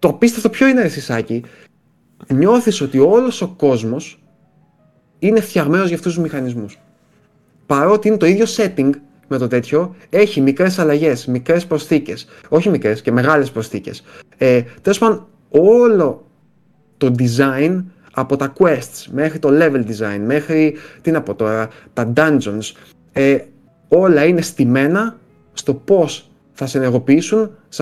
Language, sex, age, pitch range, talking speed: Greek, male, 30-49, 130-175 Hz, 130 wpm